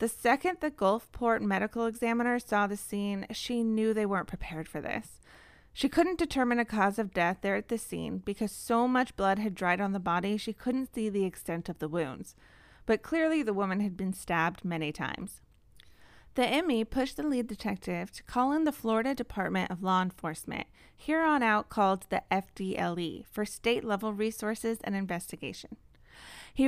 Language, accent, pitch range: English, American, 190-235 Hz